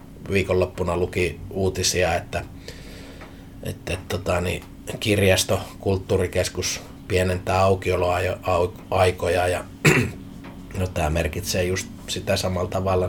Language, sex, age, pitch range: Finnish, male, 30-49, 85-95 Hz